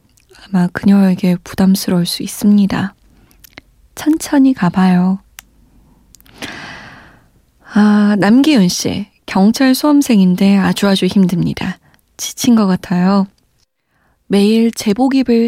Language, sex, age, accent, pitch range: Korean, female, 20-39, native, 185-245 Hz